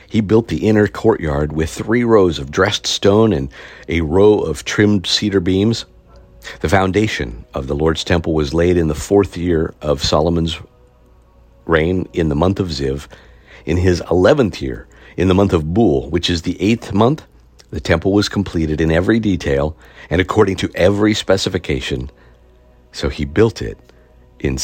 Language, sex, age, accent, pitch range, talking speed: English, male, 50-69, American, 65-90 Hz, 170 wpm